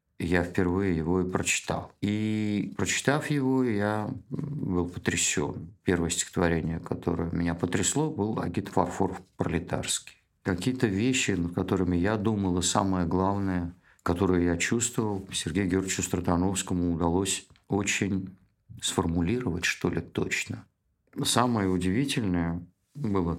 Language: Russian